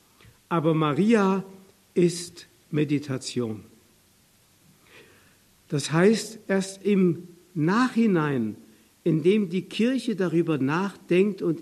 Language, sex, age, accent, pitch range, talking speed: German, male, 60-79, German, 145-185 Hz, 75 wpm